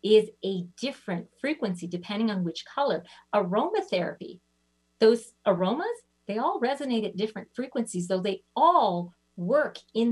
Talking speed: 130 wpm